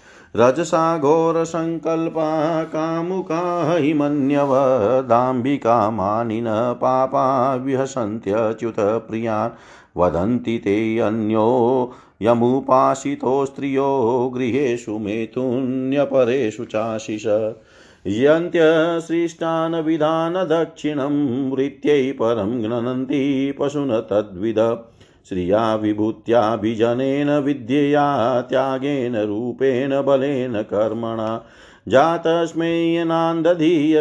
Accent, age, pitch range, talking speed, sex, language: native, 50-69, 115-150 Hz, 50 wpm, male, Hindi